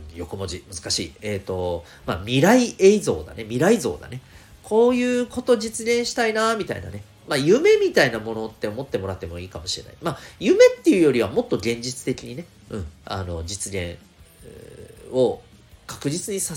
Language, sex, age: Japanese, male, 40-59